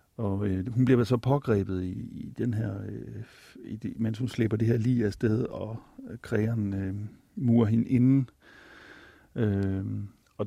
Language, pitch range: Danish, 100-120 Hz